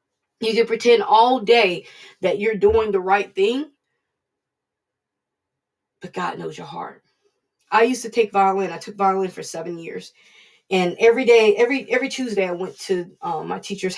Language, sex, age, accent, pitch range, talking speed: English, female, 20-39, American, 185-255 Hz, 170 wpm